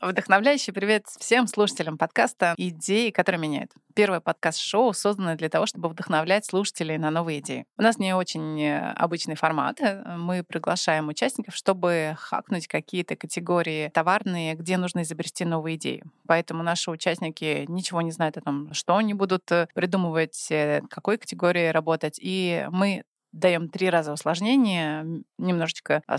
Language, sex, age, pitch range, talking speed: Russian, female, 20-39, 160-195 Hz, 135 wpm